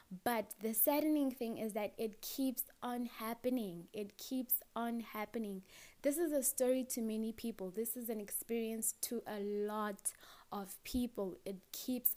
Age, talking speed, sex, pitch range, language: 20-39, 160 wpm, female, 200-245 Hz, English